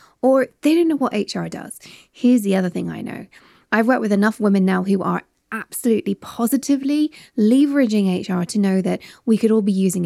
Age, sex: 20-39, female